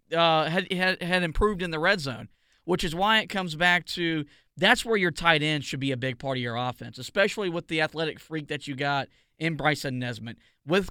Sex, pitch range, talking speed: male, 150-195 Hz, 225 wpm